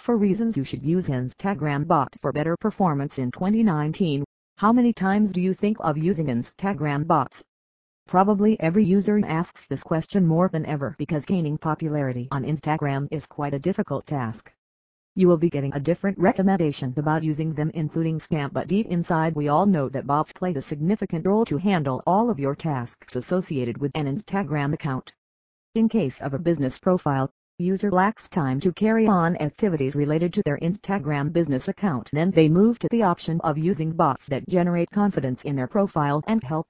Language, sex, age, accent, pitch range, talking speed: English, female, 40-59, American, 140-190 Hz, 185 wpm